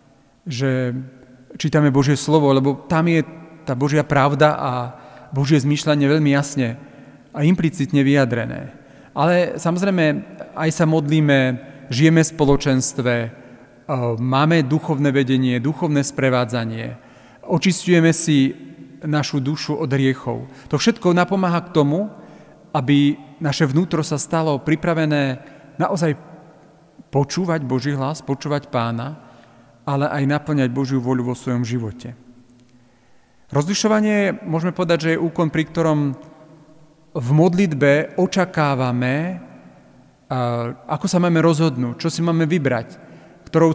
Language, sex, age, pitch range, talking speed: Slovak, male, 40-59, 130-160 Hz, 115 wpm